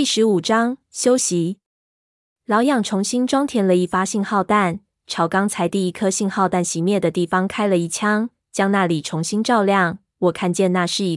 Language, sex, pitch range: Chinese, female, 175-215 Hz